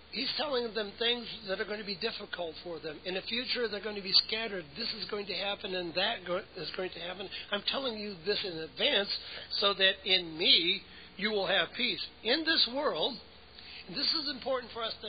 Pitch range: 165-215 Hz